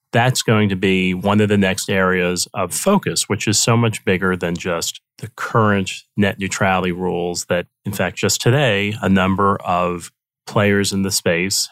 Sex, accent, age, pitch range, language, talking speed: male, American, 30-49, 90-115 Hz, English, 180 wpm